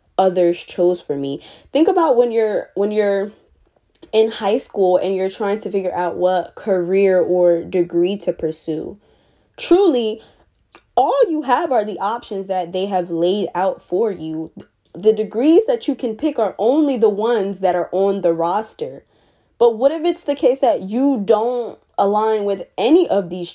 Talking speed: 175 wpm